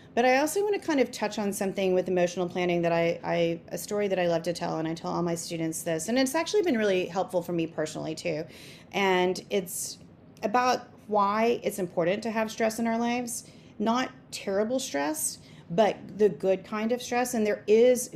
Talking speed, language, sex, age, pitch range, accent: 210 wpm, English, female, 30-49, 170-225 Hz, American